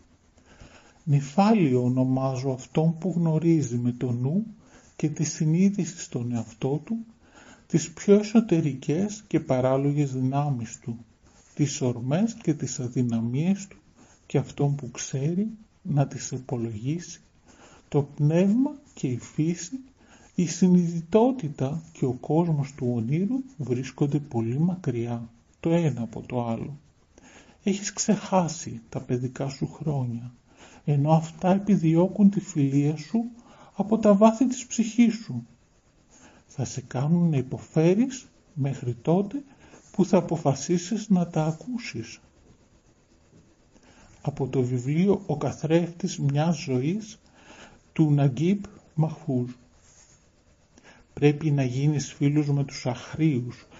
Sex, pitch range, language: male, 130-175 Hz, Greek